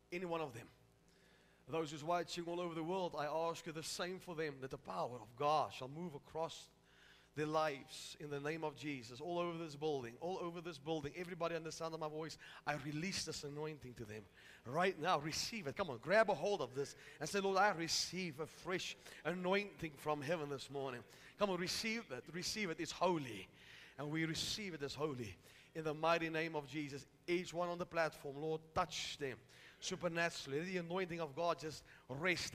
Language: English